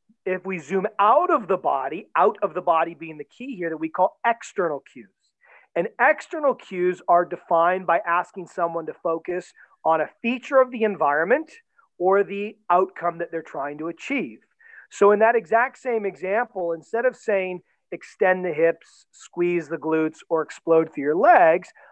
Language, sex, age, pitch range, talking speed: English, male, 40-59, 175-230 Hz, 175 wpm